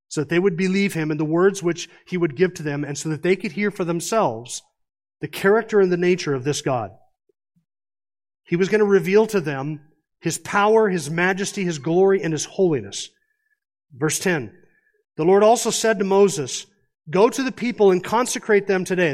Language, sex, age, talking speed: English, male, 40-59, 200 wpm